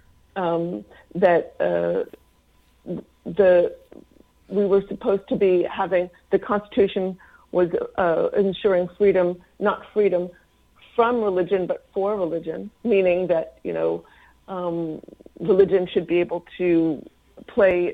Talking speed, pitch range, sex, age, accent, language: 115 wpm, 175-215 Hz, female, 50-69, American, English